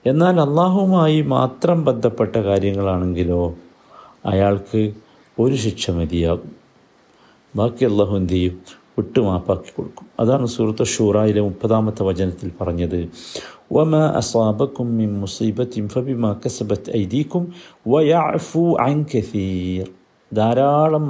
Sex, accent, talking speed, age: male, native, 55 wpm, 50-69